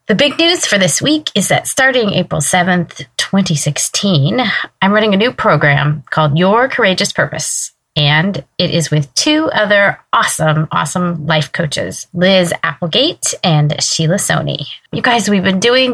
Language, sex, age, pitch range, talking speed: English, female, 30-49, 150-200 Hz, 155 wpm